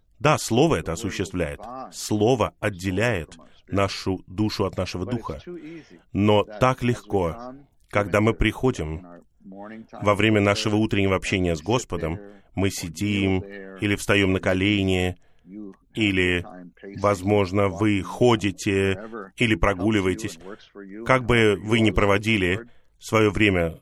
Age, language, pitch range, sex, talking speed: 30-49, Russian, 95-125 Hz, male, 110 wpm